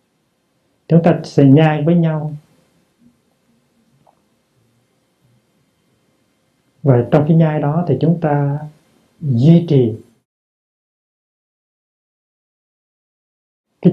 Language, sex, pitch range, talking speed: Vietnamese, male, 125-155 Hz, 75 wpm